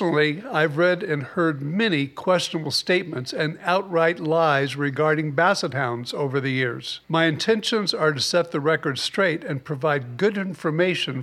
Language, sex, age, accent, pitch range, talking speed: English, male, 50-69, American, 150-180 Hz, 155 wpm